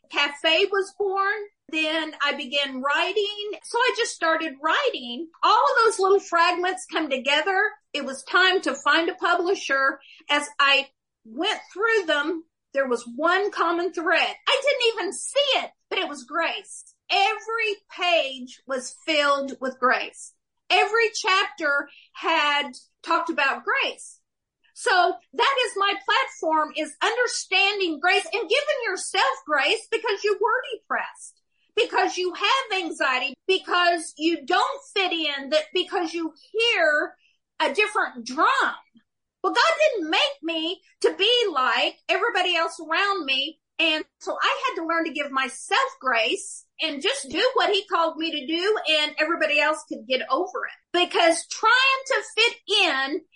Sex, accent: female, American